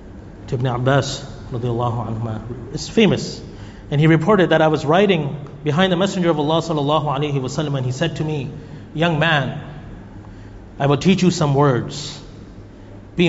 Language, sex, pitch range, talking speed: English, male, 110-185 Hz, 145 wpm